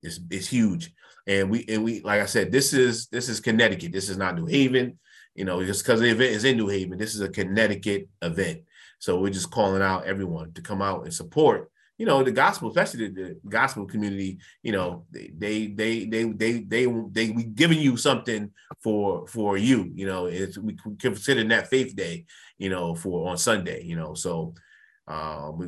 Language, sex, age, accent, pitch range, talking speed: English, male, 30-49, American, 90-115 Hz, 210 wpm